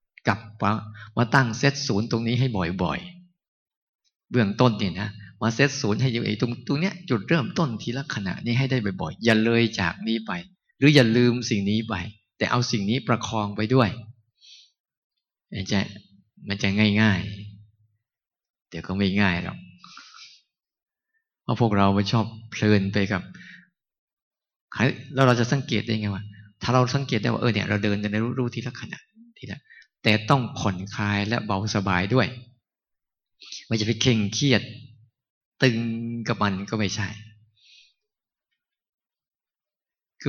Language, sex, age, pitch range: Thai, male, 20-39, 105-135 Hz